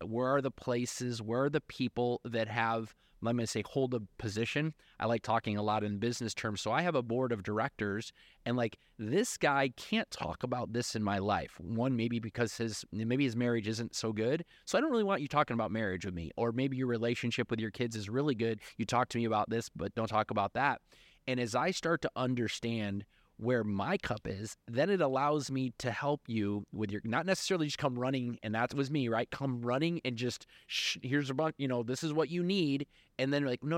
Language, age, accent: English, 30-49, American